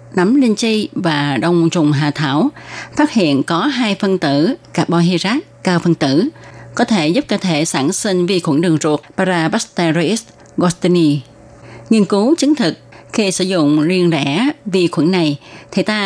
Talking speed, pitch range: 170 wpm, 150-210 Hz